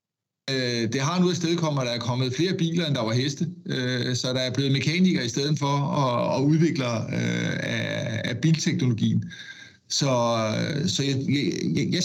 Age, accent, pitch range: 60-79, native, 125-160 Hz